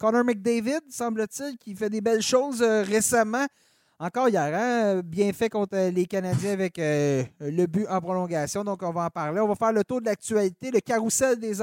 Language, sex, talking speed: French, male, 200 wpm